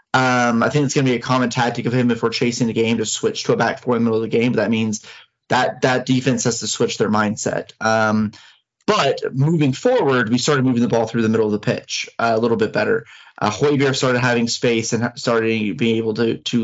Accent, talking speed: American, 255 wpm